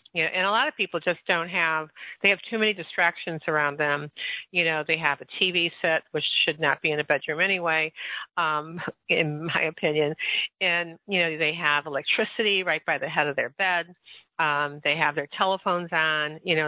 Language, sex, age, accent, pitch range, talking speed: English, female, 50-69, American, 155-195 Hz, 210 wpm